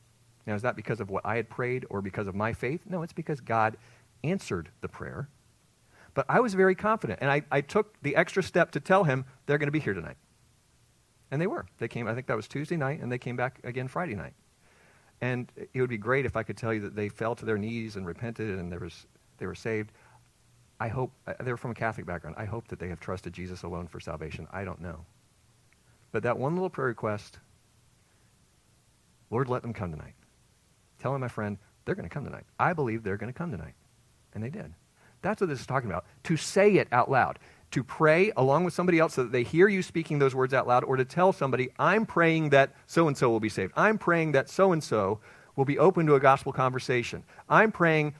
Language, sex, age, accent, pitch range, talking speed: English, male, 40-59, American, 110-145 Hz, 230 wpm